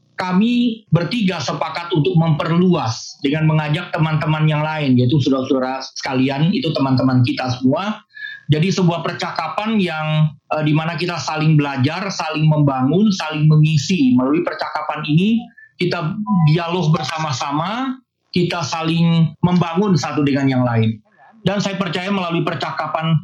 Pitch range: 140-180 Hz